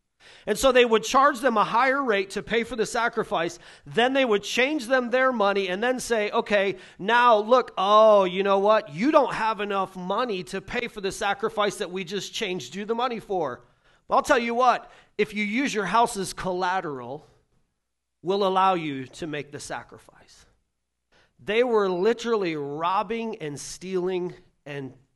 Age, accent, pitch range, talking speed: 30-49, American, 150-225 Hz, 180 wpm